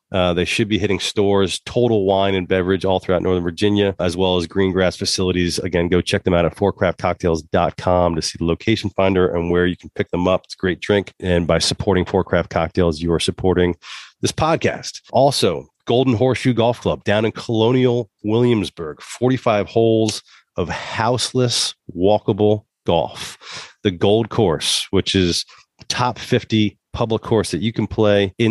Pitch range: 90-105 Hz